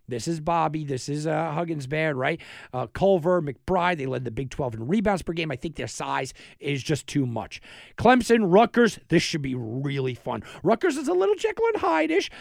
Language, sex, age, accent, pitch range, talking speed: English, male, 50-69, American, 130-175 Hz, 210 wpm